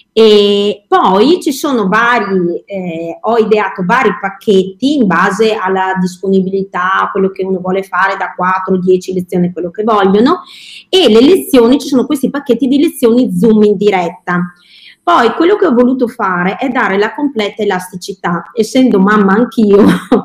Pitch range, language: 190-245 Hz, Italian